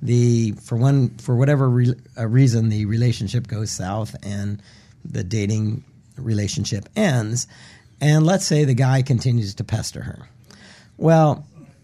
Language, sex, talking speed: English, male, 135 wpm